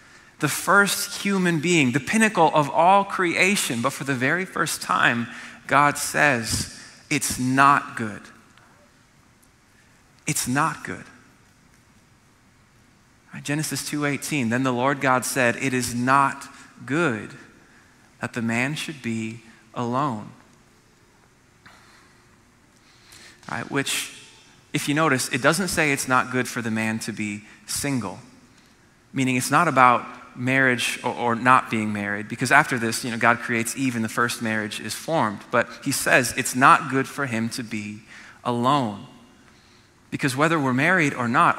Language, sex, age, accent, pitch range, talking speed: English, male, 20-39, American, 115-145 Hz, 140 wpm